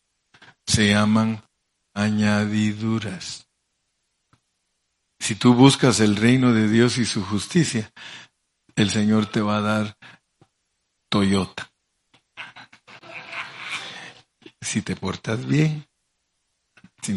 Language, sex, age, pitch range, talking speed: Spanish, male, 50-69, 100-120 Hz, 85 wpm